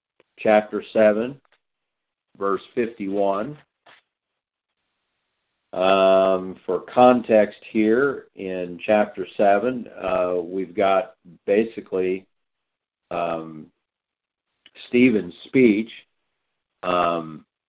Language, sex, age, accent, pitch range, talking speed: English, male, 50-69, American, 95-120 Hz, 60 wpm